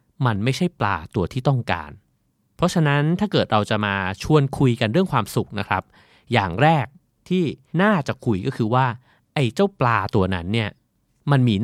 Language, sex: Thai, male